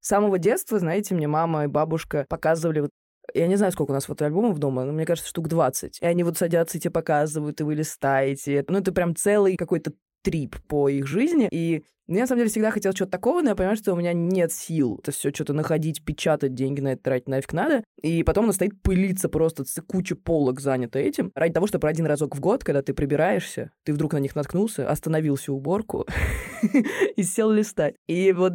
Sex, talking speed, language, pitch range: female, 225 wpm, Russian, 155-200 Hz